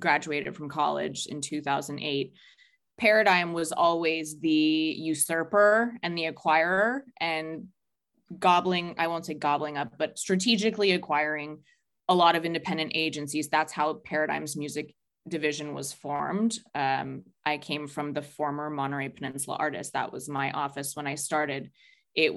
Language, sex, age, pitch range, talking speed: English, female, 20-39, 150-170 Hz, 140 wpm